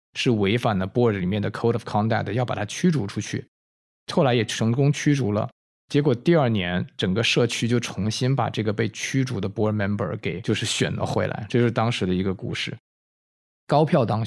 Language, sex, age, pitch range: Chinese, male, 20-39, 105-130 Hz